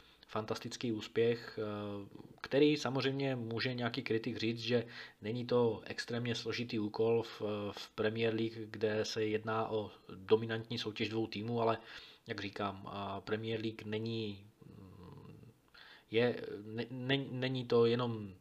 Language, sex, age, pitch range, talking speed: Czech, male, 20-39, 105-115 Hz, 115 wpm